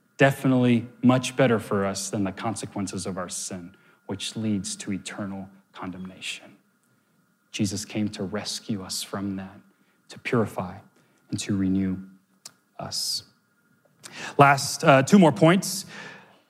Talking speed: 125 wpm